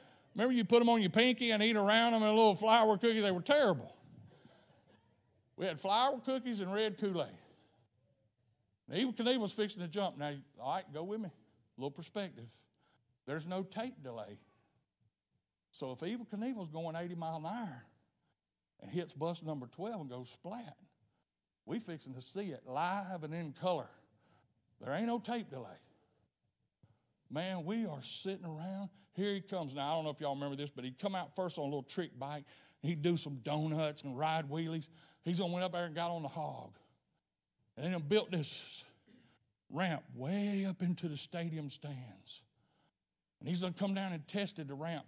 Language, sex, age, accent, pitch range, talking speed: English, male, 60-79, American, 140-195 Hz, 190 wpm